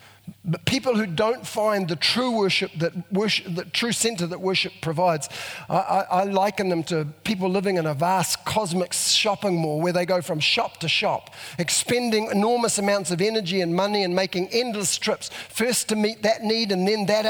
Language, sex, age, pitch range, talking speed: English, male, 50-69, 150-205 Hz, 195 wpm